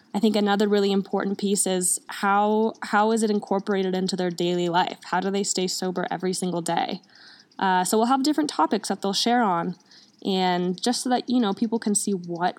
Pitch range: 180-230 Hz